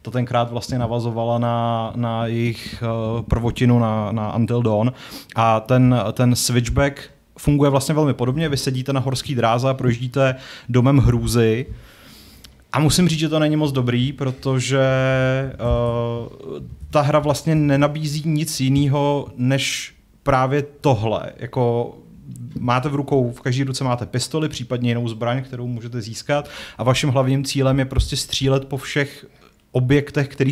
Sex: male